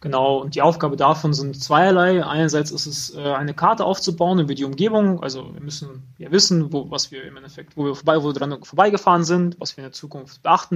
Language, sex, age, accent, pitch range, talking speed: German, male, 20-39, German, 145-180 Hz, 220 wpm